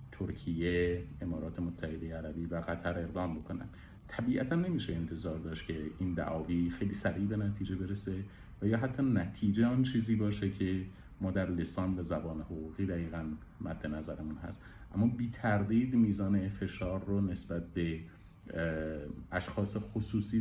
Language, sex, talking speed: Persian, male, 140 wpm